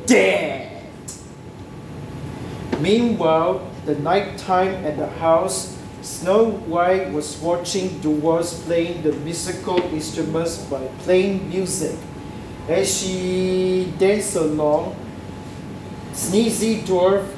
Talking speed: 90 wpm